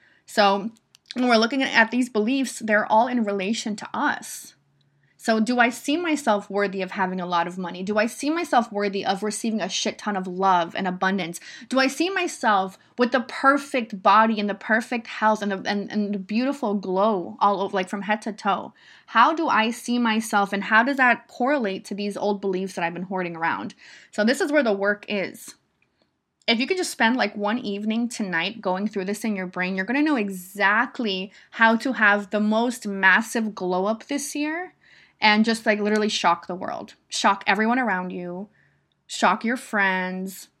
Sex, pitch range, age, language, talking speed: female, 195-240 Hz, 20-39, English, 200 wpm